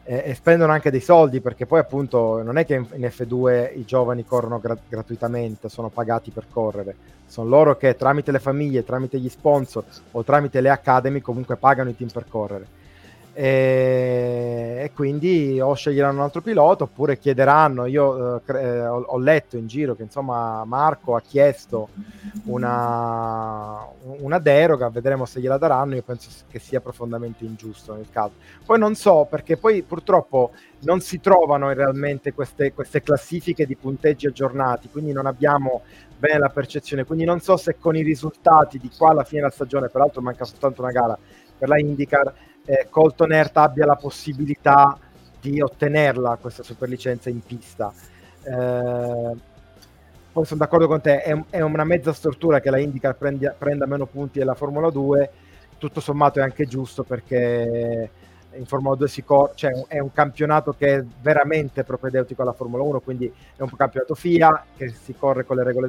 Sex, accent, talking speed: male, native, 170 wpm